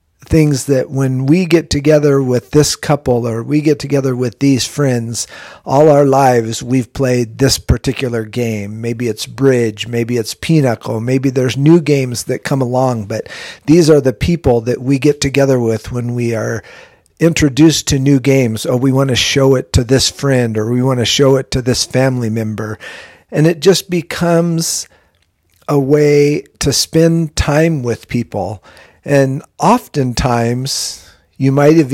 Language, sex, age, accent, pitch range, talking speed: English, male, 50-69, American, 115-145 Hz, 165 wpm